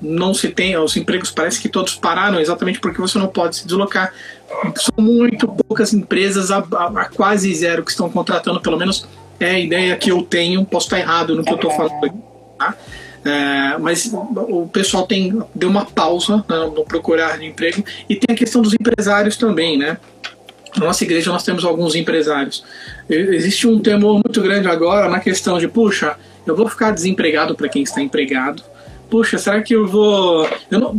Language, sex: Portuguese, male